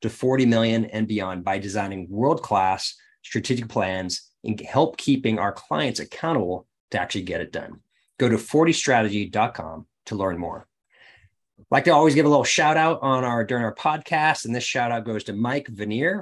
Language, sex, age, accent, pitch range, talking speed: English, male, 30-49, American, 105-135 Hz, 185 wpm